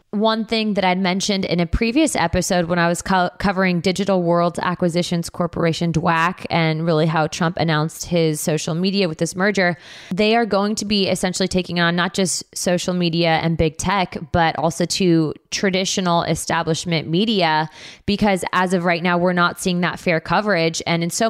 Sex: female